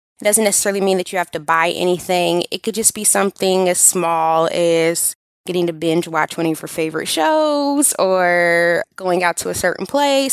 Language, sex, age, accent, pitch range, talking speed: English, female, 20-39, American, 170-215 Hz, 200 wpm